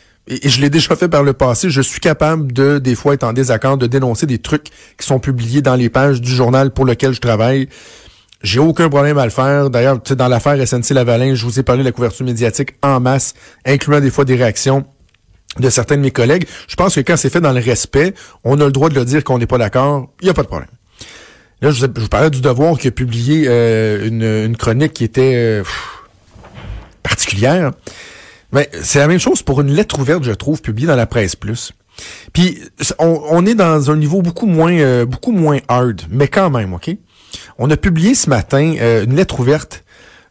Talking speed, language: 225 wpm, French